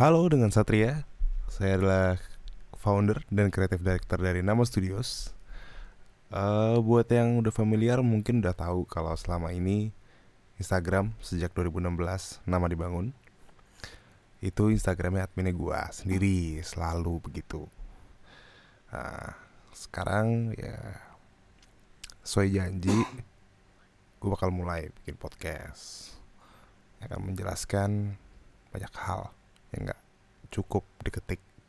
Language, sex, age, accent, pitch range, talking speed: Indonesian, male, 20-39, native, 90-105 Hz, 100 wpm